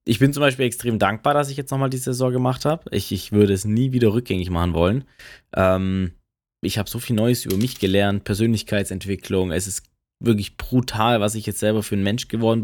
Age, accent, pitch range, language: 20-39, German, 95-120 Hz, German